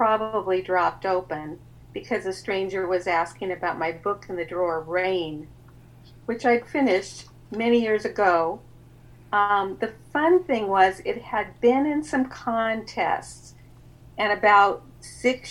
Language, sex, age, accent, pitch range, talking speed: English, female, 50-69, American, 170-230 Hz, 135 wpm